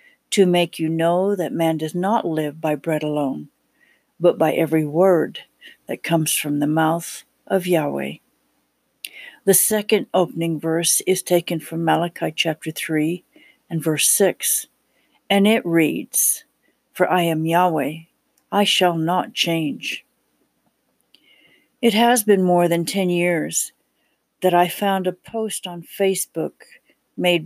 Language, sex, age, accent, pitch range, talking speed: English, female, 60-79, American, 165-225 Hz, 135 wpm